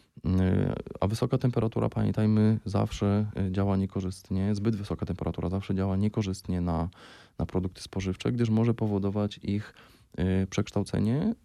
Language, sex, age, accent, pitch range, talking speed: Polish, male, 20-39, native, 95-110 Hz, 115 wpm